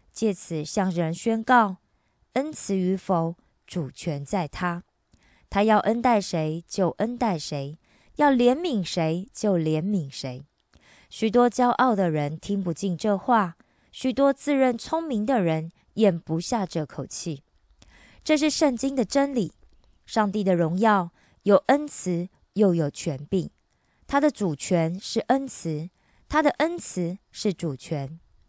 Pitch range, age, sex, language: 165-230 Hz, 20-39, female, Korean